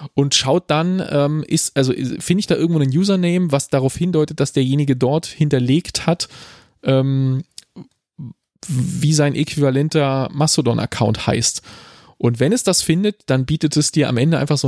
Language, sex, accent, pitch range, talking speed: German, male, German, 130-155 Hz, 160 wpm